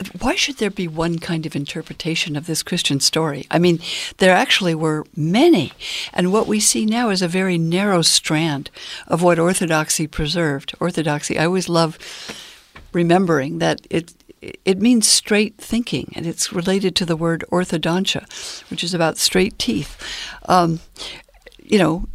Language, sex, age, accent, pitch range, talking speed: English, female, 60-79, American, 160-200 Hz, 155 wpm